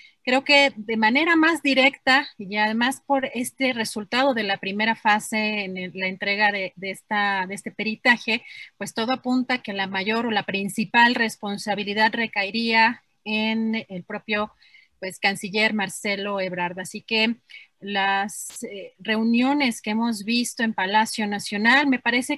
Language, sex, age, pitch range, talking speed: Spanish, female, 30-49, 205-250 Hz, 145 wpm